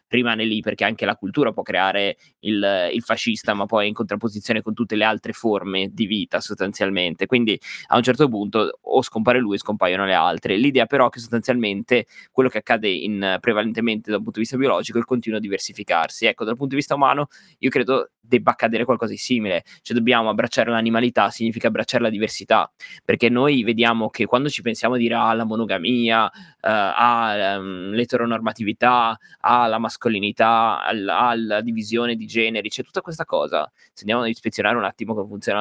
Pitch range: 105-120 Hz